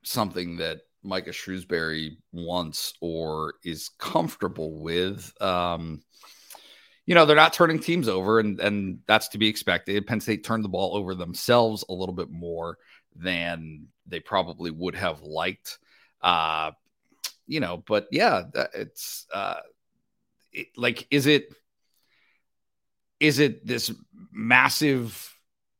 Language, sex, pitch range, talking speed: English, male, 90-130 Hz, 125 wpm